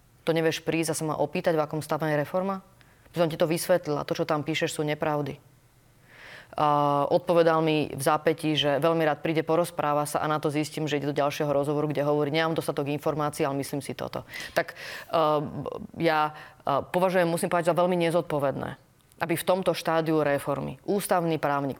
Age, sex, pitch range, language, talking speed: 30-49, female, 150-170 Hz, Slovak, 195 wpm